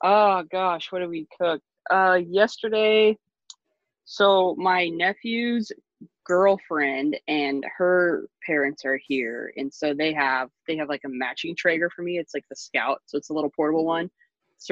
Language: English